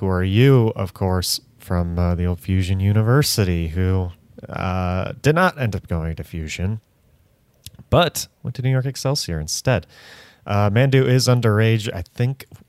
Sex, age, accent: male, 30-49, American